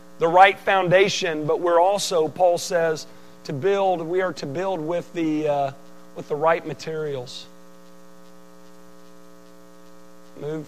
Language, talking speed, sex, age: English, 125 wpm, male, 40-59